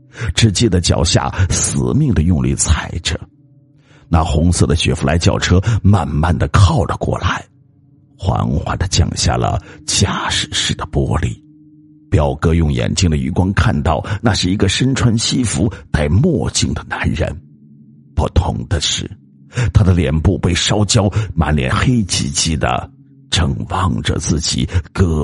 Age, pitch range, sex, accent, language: 50-69, 75-105 Hz, male, native, Chinese